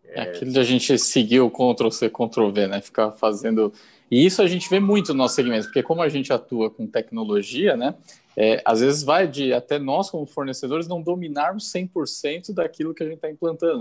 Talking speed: 200 wpm